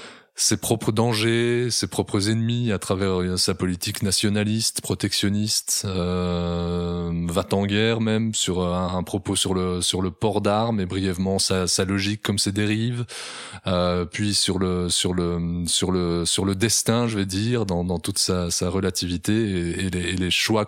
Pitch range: 90-105 Hz